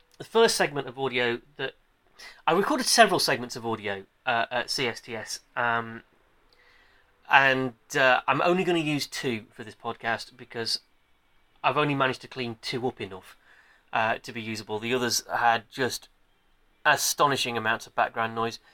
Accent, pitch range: British, 120-155 Hz